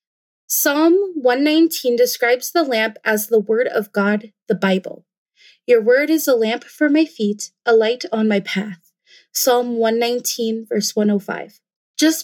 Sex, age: female, 20-39